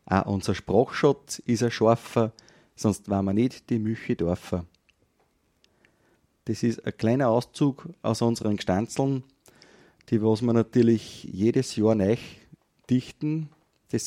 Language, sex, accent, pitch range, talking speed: English, male, Austrian, 105-130 Hz, 120 wpm